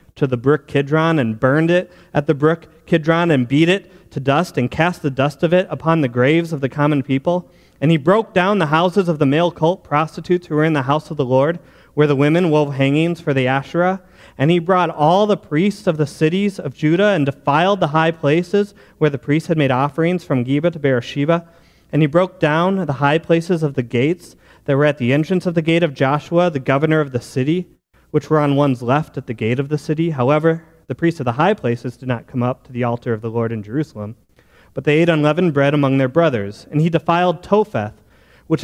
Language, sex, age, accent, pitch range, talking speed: English, male, 30-49, American, 135-170 Hz, 235 wpm